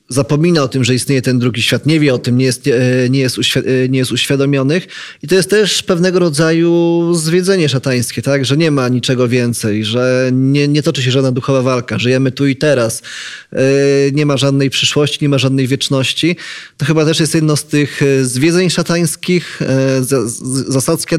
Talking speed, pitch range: 170 wpm, 130-160 Hz